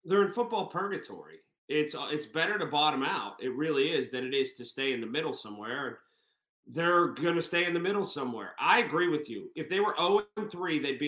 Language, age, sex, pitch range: English, 30-49, male, 140-190 Hz